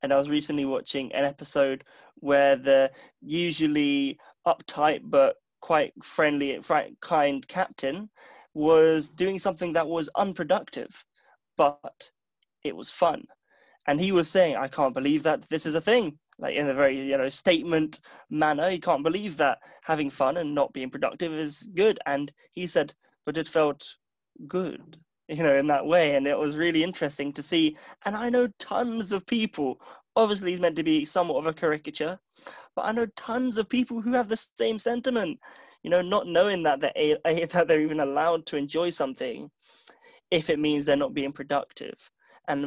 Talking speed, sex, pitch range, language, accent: 175 wpm, male, 145-185 Hz, English, British